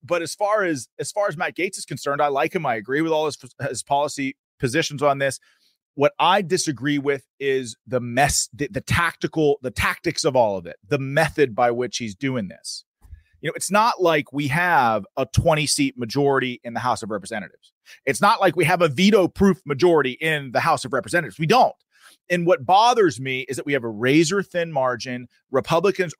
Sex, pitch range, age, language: male, 135-185 Hz, 30-49, English